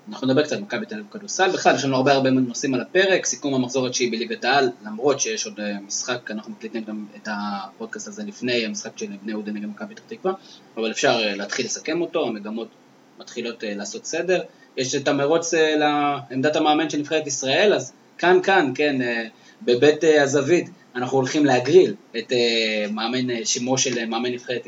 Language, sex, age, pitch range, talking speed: Hebrew, male, 20-39, 115-155 Hz, 190 wpm